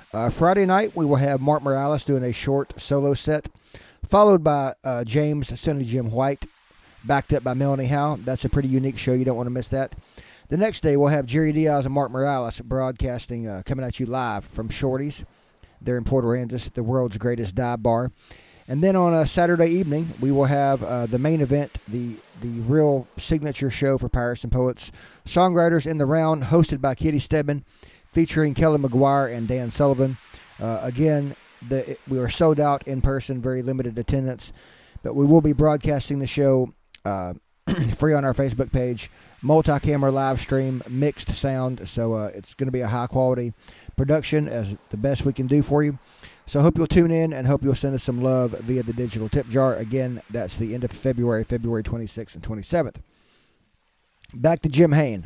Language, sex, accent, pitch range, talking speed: English, male, American, 120-145 Hz, 190 wpm